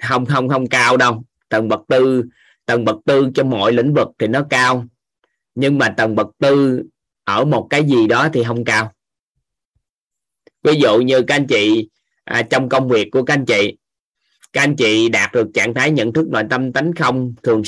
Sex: male